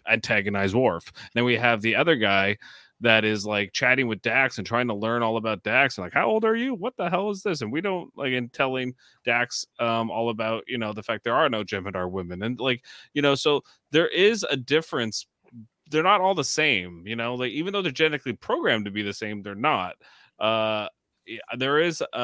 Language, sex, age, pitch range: English, male, 20-39, 105-135 Hz